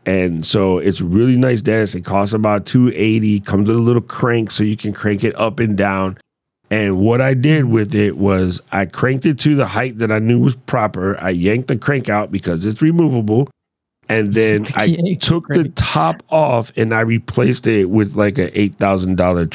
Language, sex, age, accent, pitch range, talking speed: English, male, 40-59, American, 105-140 Hz, 195 wpm